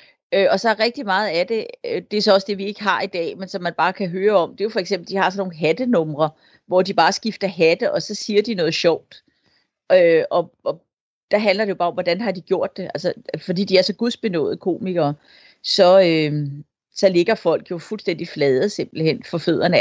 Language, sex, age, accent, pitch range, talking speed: Danish, female, 40-59, native, 160-200 Hz, 235 wpm